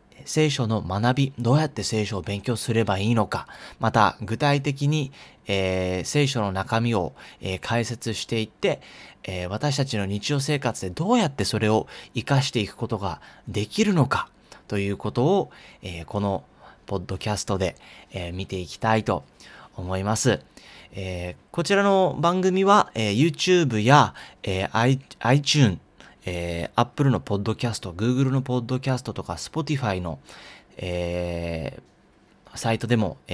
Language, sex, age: Japanese, male, 30-49